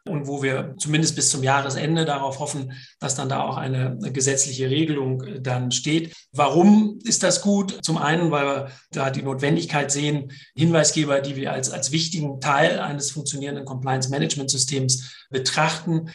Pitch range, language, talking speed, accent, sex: 135-160 Hz, German, 150 wpm, German, male